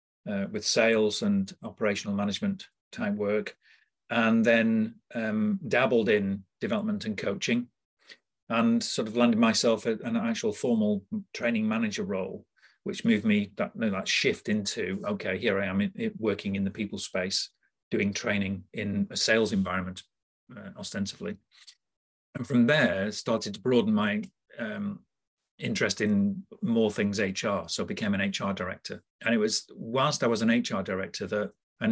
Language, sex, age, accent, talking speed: English, male, 40-59, British, 150 wpm